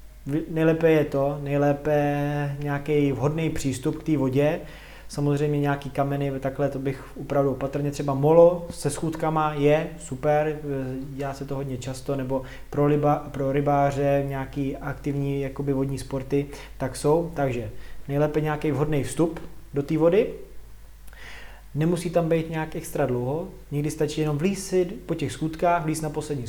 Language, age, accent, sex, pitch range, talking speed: Czech, 20-39, native, male, 135-155 Hz, 145 wpm